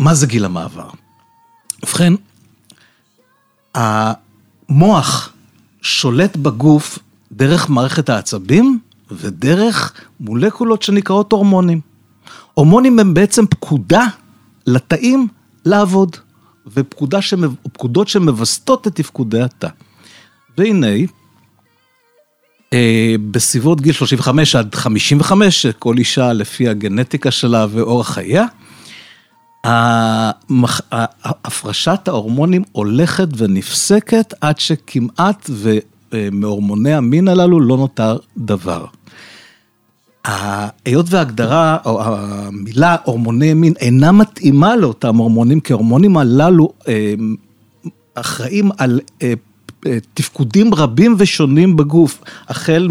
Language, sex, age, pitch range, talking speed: Hebrew, male, 50-69, 115-170 Hz, 80 wpm